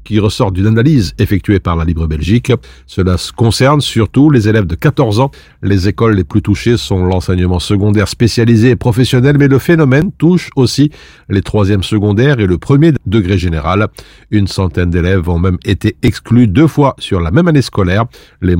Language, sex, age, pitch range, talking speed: French, male, 50-69, 95-125 Hz, 180 wpm